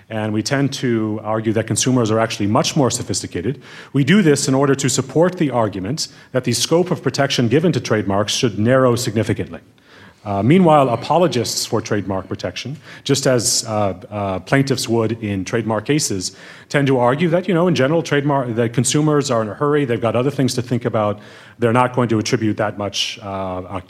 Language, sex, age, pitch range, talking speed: English, male, 30-49, 105-140 Hz, 190 wpm